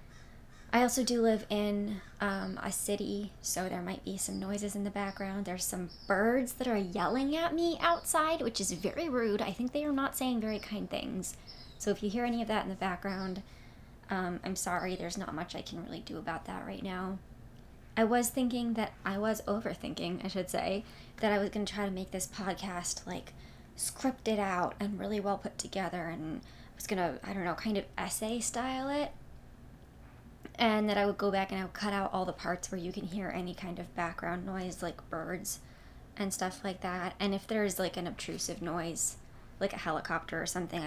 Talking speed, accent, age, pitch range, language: 215 wpm, American, 20-39, 185-230 Hz, English